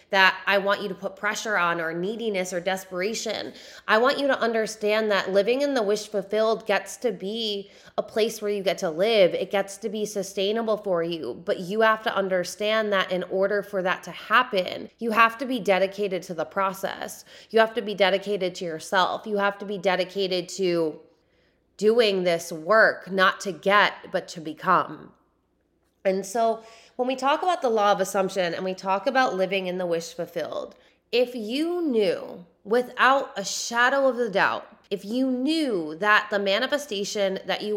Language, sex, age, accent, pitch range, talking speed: English, female, 20-39, American, 185-225 Hz, 185 wpm